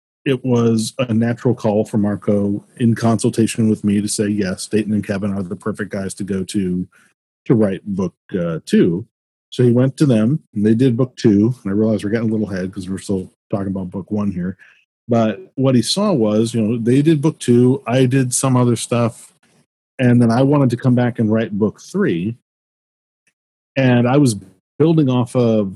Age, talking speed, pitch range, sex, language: 40-59, 205 wpm, 105-125 Hz, male, English